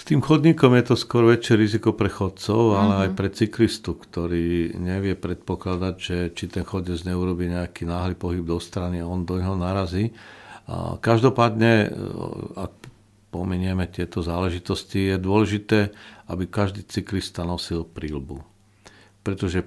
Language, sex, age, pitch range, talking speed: Slovak, male, 50-69, 85-105 Hz, 135 wpm